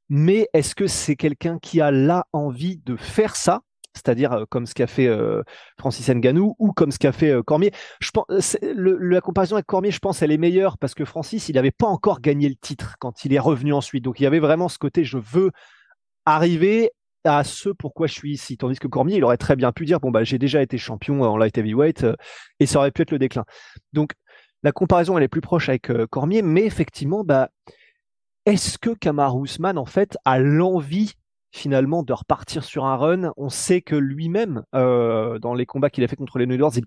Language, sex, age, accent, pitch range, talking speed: French, male, 30-49, French, 130-175 Hz, 220 wpm